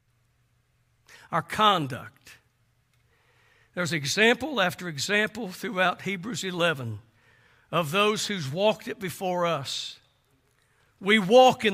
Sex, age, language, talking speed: male, 60-79, English, 95 wpm